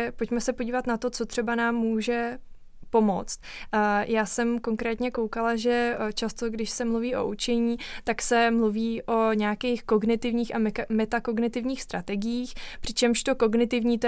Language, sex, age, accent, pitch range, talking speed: Czech, female, 20-39, native, 220-235 Hz, 145 wpm